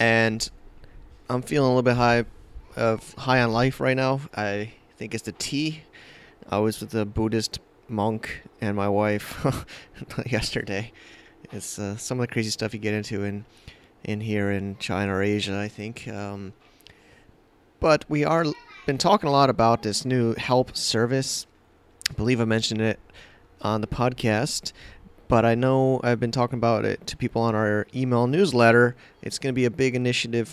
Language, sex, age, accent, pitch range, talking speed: English, male, 30-49, American, 105-125 Hz, 175 wpm